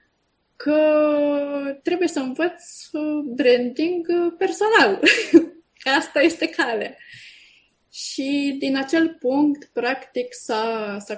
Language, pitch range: Romanian, 240-305 Hz